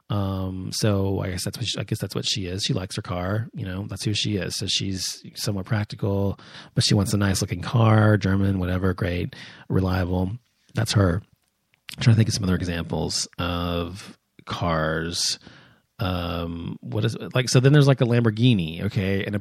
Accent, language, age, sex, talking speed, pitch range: American, English, 30-49, male, 205 wpm, 95-125 Hz